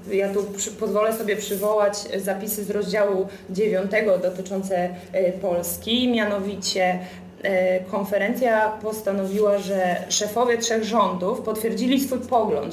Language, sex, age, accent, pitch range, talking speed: Polish, female, 20-39, native, 190-225 Hz, 100 wpm